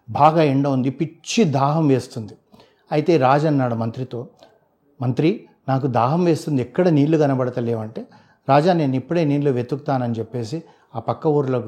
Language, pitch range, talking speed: Telugu, 125-165 Hz, 140 wpm